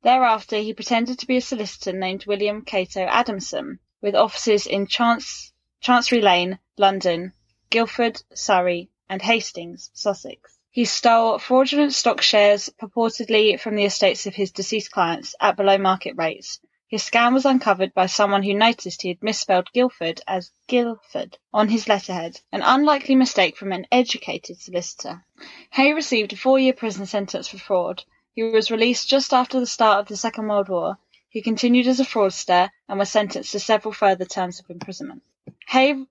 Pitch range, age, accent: 190-235 Hz, 10-29, British